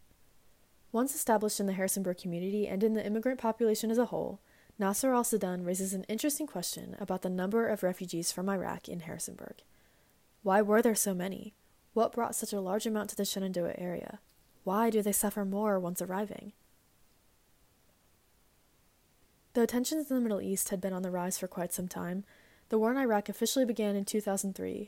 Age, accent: 20-39, American